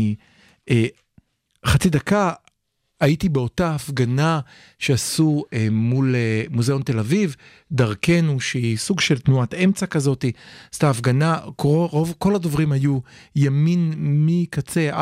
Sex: male